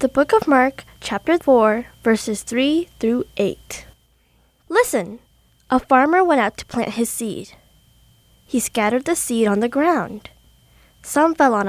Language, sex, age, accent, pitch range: Korean, female, 10-29, American, 220-305 Hz